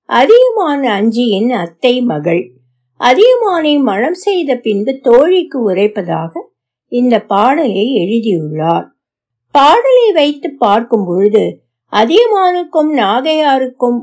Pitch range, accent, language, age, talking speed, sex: 210-335 Hz, native, Tamil, 60-79, 55 wpm, female